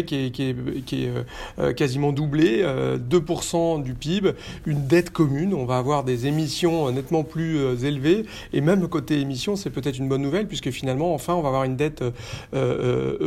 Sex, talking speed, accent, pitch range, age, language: male, 205 wpm, French, 135-165 Hz, 40-59, French